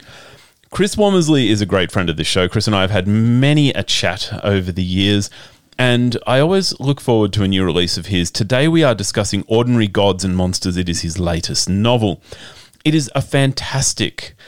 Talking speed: 200 wpm